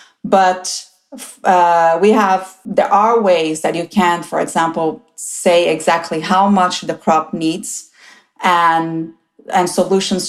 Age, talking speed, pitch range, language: 30-49, 130 wpm, 170-210 Hz, English